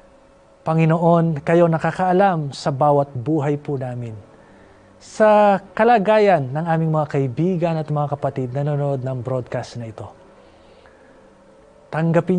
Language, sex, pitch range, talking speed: Filipino, male, 130-165 Hz, 110 wpm